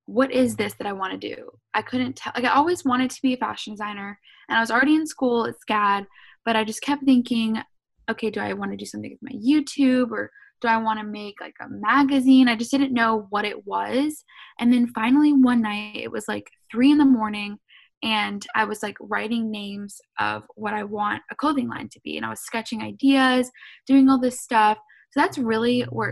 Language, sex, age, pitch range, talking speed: English, female, 10-29, 210-255 Hz, 225 wpm